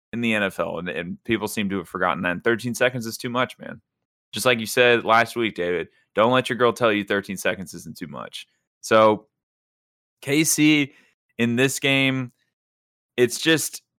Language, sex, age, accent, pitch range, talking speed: English, male, 30-49, American, 105-125 Hz, 180 wpm